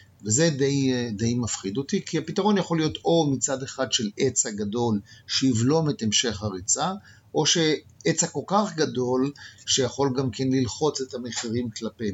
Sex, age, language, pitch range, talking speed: male, 50-69, Hebrew, 110-150 Hz, 155 wpm